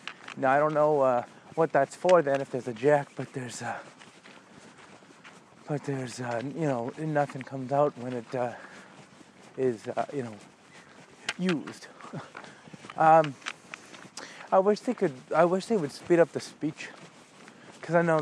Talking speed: 160 wpm